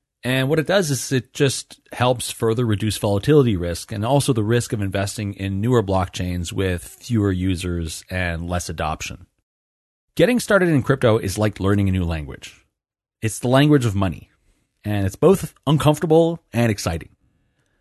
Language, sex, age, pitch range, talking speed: English, male, 30-49, 95-130 Hz, 160 wpm